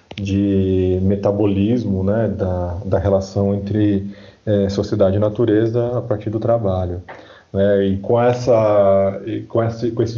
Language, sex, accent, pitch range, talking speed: Portuguese, male, Brazilian, 100-125 Hz, 135 wpm